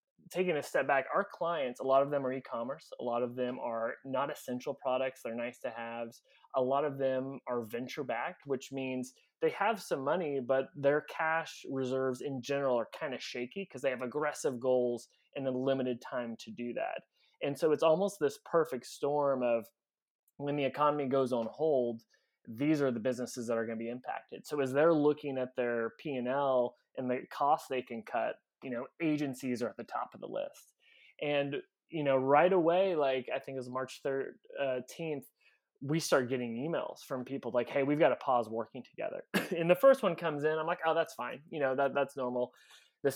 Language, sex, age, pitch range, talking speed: English, male, 20-39, 125-150 Hz, 205 wpm